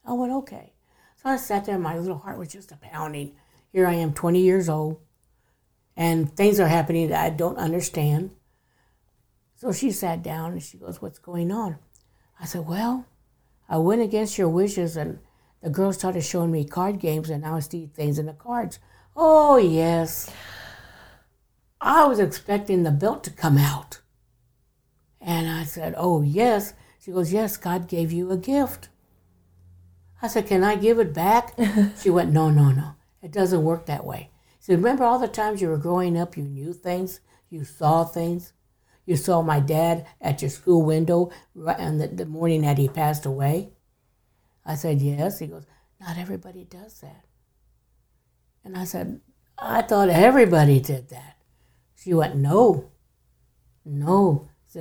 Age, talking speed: 60-79, 170 wpm